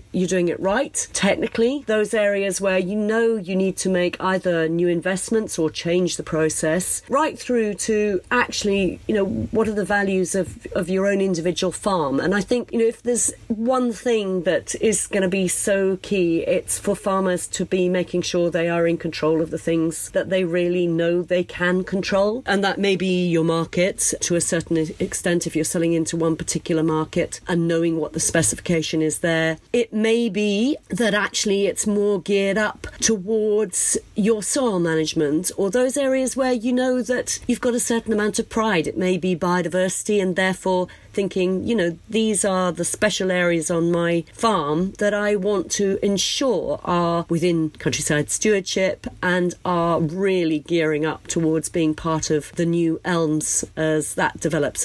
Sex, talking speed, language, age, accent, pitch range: female, 180 wpm, English, 40-59, British, 165-205 Hz